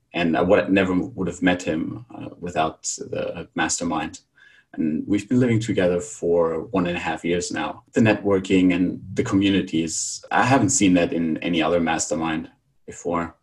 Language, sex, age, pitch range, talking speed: English, male, 30-49, 85-100 Hz, 165 wpm